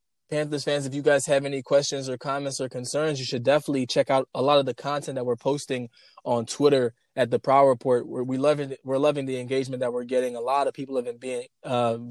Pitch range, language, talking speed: 125-140 Hz, English, 245 wpm